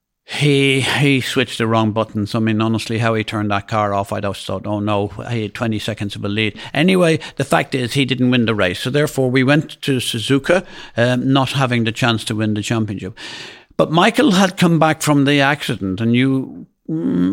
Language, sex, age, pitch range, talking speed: English, male, 50-69, 110-140 Hz, 215 wpm